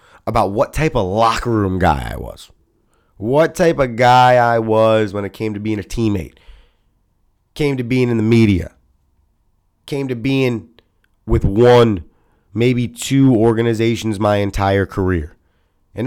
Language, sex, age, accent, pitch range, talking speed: English, male, 30-49, American, 100-125 Hz, 150 wpm